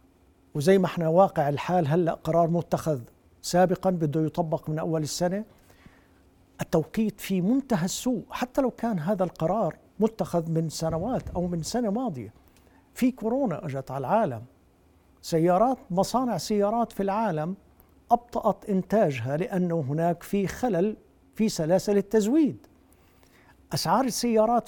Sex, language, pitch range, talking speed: male, Arabic, 155-210 Hz, 125 wpm